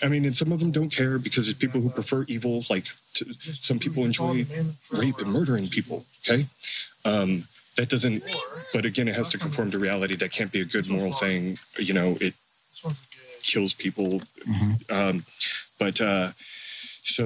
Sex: male